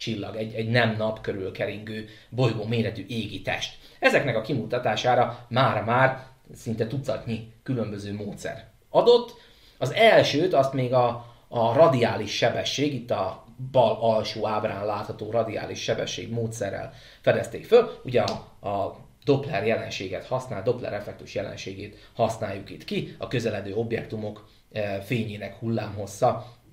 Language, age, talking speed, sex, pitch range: Hungarian, 30-49, 125 wpm, male, 110-130 Hz